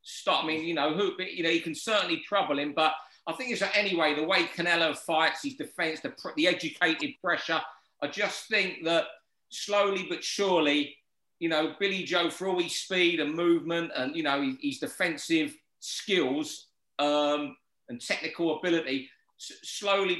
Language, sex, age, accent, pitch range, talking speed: English, male, 40-59, British, 155-205 Hz, 170 wpm